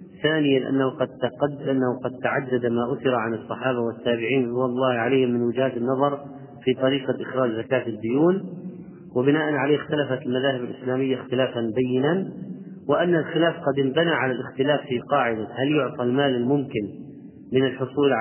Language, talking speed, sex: Arabic, 135 wpm, male